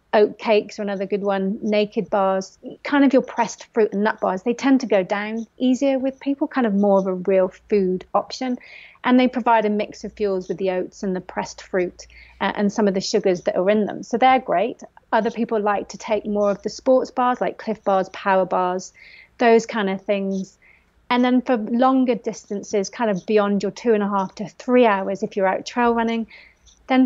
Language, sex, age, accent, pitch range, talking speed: English, female, 30-49, British, 195-240 Hz, 220 wpm